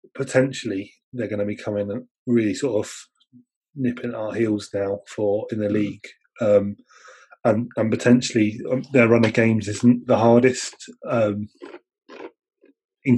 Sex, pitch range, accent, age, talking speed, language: male, 105-125 Hz, British, 20-39, 140 wpm, English